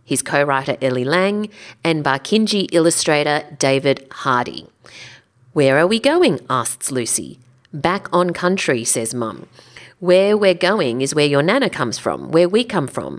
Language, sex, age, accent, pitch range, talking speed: English, female, 40-59, Australian, 135-195 Hz, 150 wpm